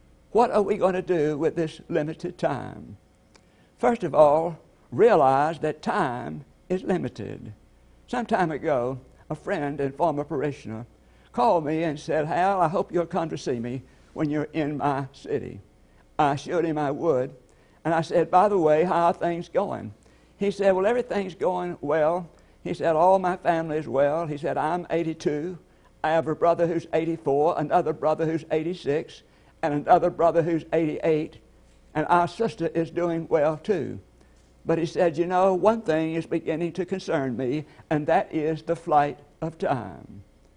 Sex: male